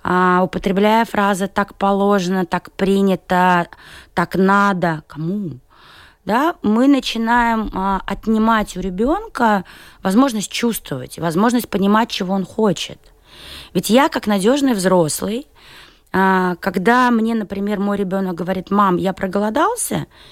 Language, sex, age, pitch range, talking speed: Russian, female, 20-39, 185-245 Hz, 105 wpm